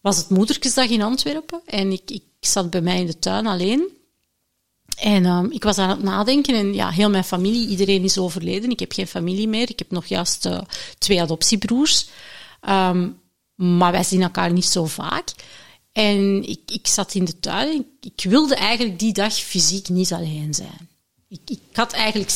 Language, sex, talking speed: Dutch, female, 190 wpm